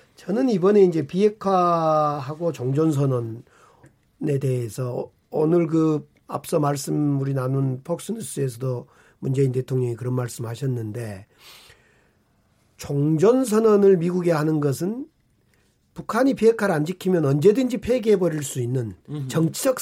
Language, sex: Korean, male